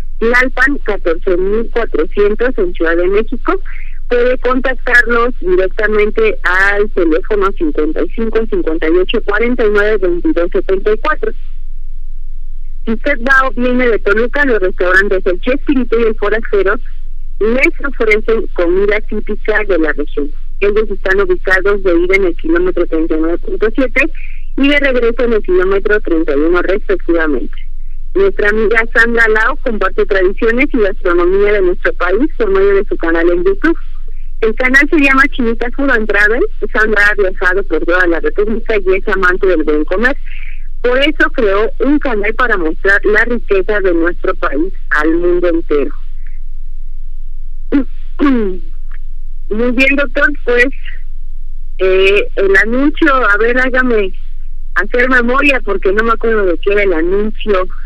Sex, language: female, Spanish